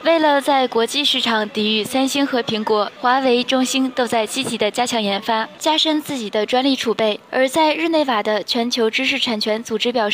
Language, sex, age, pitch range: Chinese, female, 20-39, 220-270 Hz